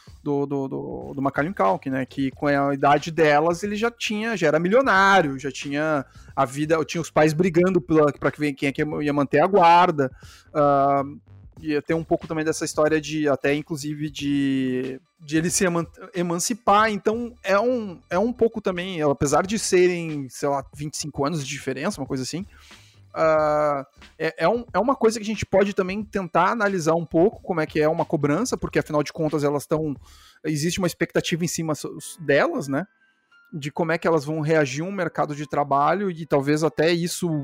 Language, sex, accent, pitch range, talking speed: Portuguese, male, Brazilian, 145-200 Hz, 180 wpm